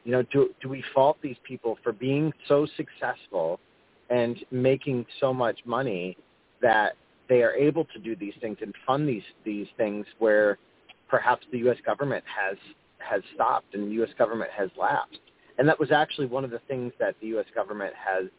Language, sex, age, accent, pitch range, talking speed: English, male, 30-49, American, 100-130 Hz, 185 wpm